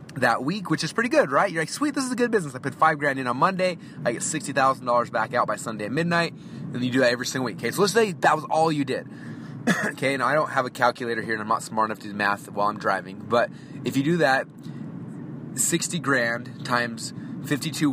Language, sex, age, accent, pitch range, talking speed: English, male, 30-49, American, 120-160 Hz, 250 wpm